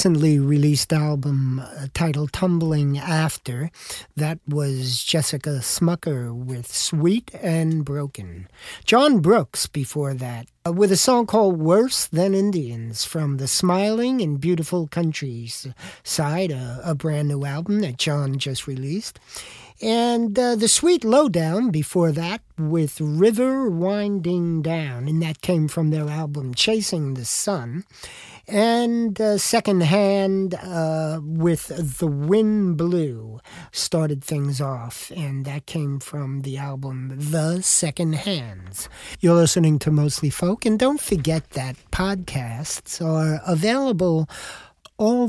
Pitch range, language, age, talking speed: 140-185 Hz, English, 50-69, 125 wpm